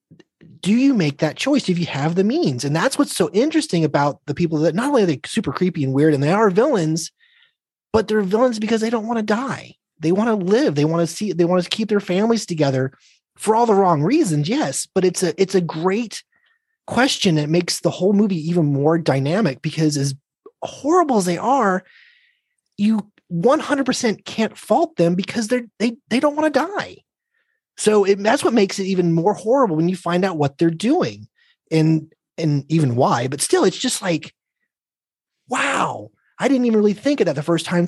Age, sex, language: 30-49, male, English